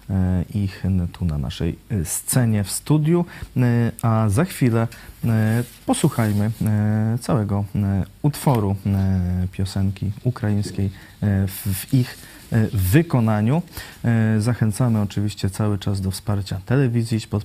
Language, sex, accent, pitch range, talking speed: Polish, male, native, 95-115 Hz, 95 wpm